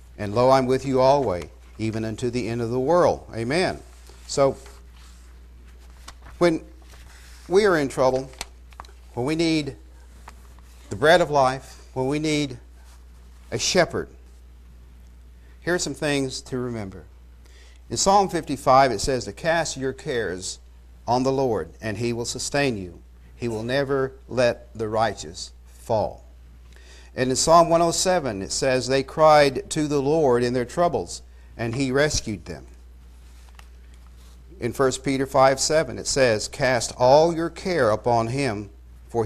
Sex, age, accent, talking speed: male, 50-69, American, 145 wpm